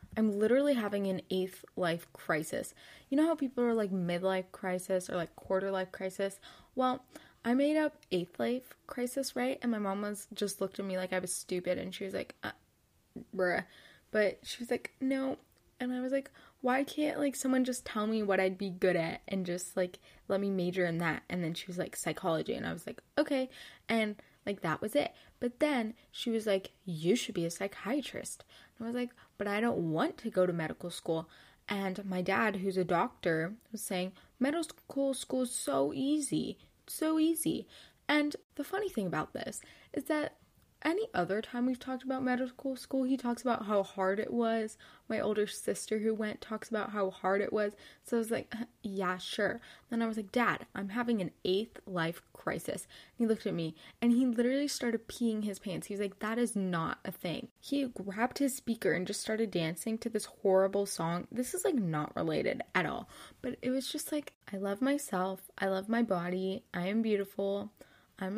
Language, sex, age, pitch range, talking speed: English, female, 10-29, 190-250 Hz, 205 wpm